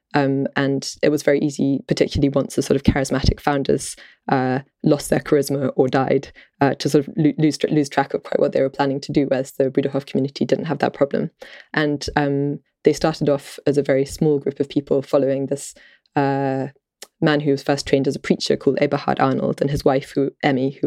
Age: 20-39